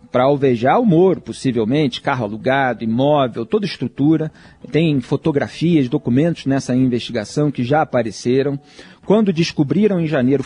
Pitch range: 130-170 Hz